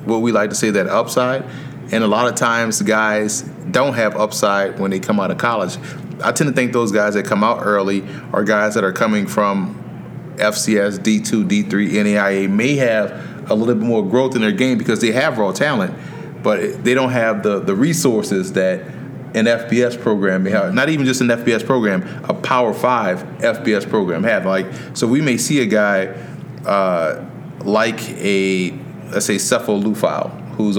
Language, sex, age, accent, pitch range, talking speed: English, male, 30-49, American, 105-125 Hz, 185 wpm